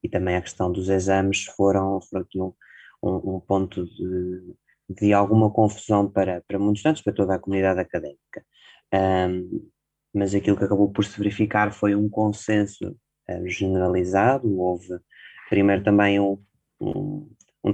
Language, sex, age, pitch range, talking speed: Portuguese, male, 20-39, 95-105 Hz, 140 wpm